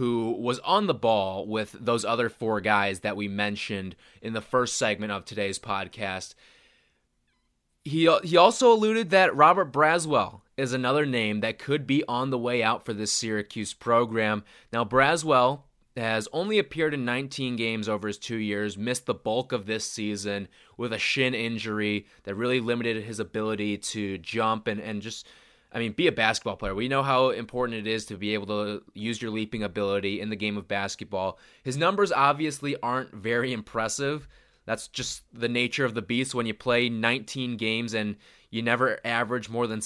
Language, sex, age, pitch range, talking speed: English, male, 20-39, 105-130 Hz, 185 wpm